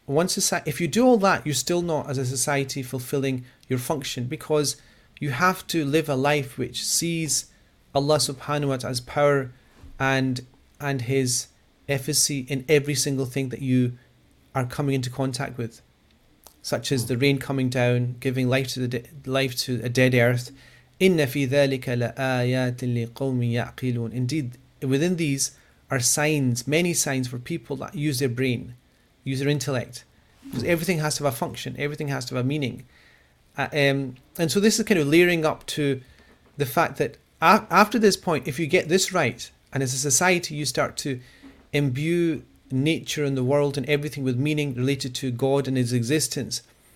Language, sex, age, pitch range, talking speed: English, male, 40-59, 125-150 Hz, 165 wpm